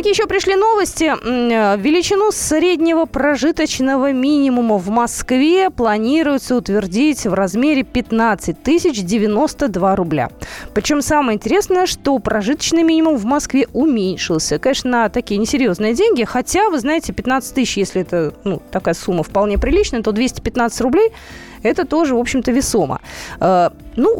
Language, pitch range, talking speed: Russian, 210-295 Hz, 130 wpm